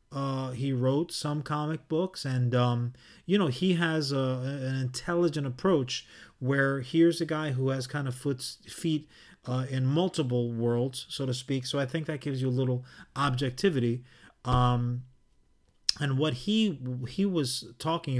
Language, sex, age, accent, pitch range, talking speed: English, male, 30-49, American, 125-150 Hz, 160 wpm